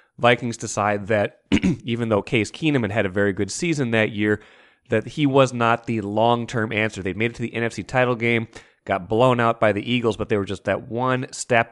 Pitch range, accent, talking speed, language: 110-125 Hz, American, 215 wpm, English